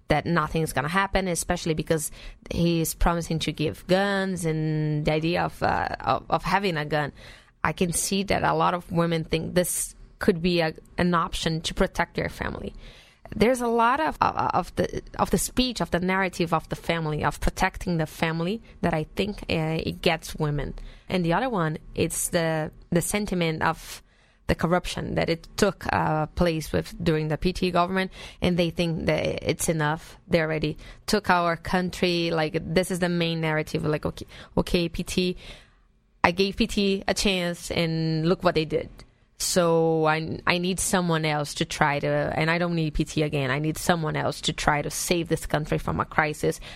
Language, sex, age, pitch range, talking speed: English, female, 20-39, 155-185 Hz, 185 wpm